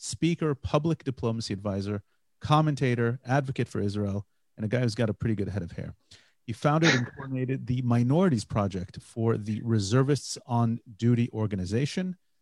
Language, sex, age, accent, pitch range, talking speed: English, male, 30-49, American, 105-135 Hz, 155 wpm